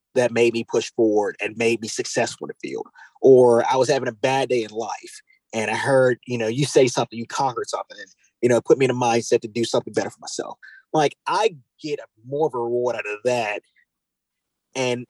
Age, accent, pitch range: 30-49, American, 115-145 Hz